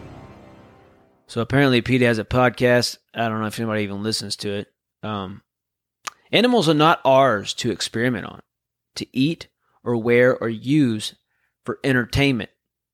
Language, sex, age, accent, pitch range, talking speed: English, male, 30-49, American, 110-135 Hz, 145 wpm